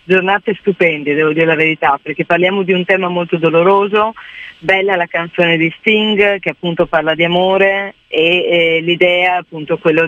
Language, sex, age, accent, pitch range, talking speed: Italian, female, 30-49, native, 165-200 Hz, 165 wpm